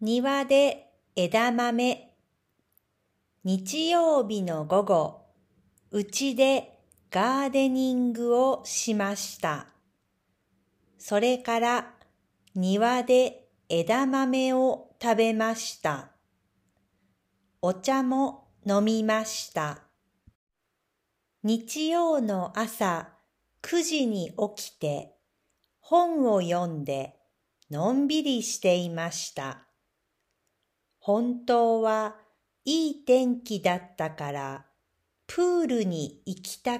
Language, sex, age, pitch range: Japanese, female, 50-69, 155-250 Hz